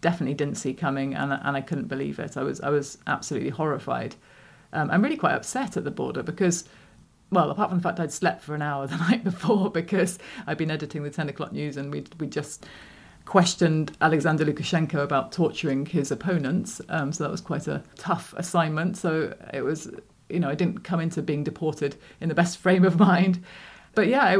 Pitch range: 150-175 Hz